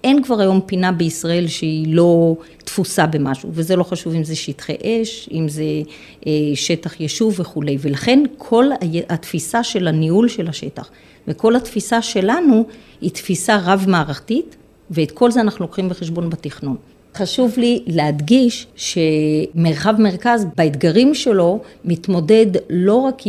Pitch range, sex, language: 160-215 Hz, female, Hebrew